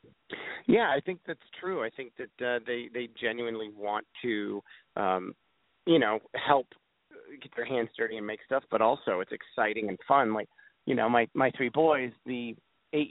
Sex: male